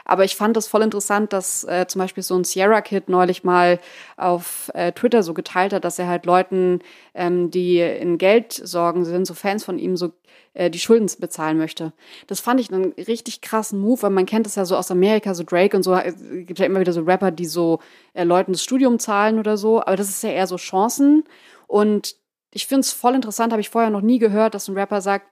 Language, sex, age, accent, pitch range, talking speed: German, female, 20-39, German, 185-220 Hz, 235 wpm